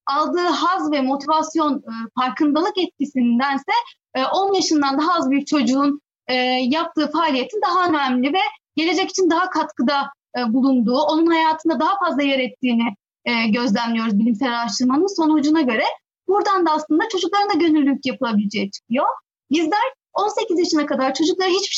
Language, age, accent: Turkish, 30-49, native